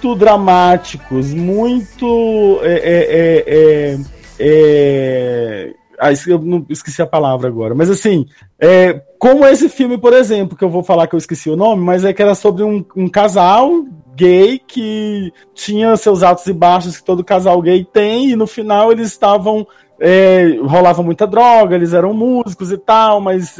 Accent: Brazilian